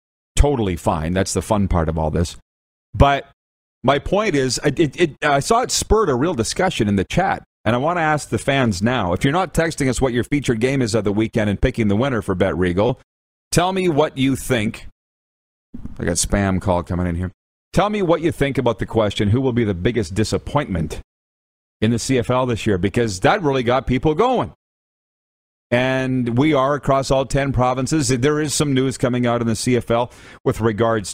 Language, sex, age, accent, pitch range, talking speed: English, male, 40-59, American, 95-135 Hz, 205 wpm